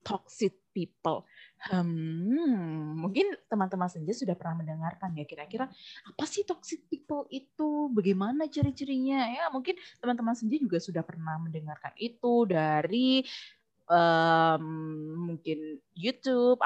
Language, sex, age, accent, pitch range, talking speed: Indonesian, female, 20-39, native, 165-250 Hz, 110 wpm